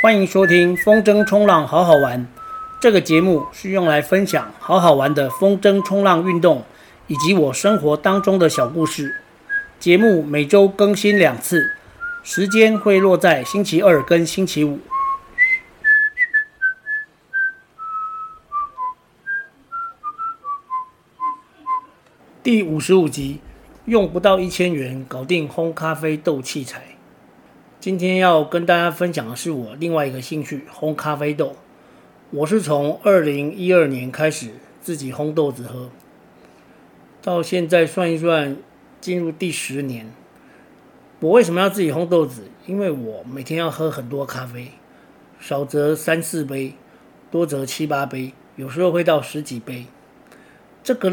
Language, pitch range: Chinese, 145-205 Hz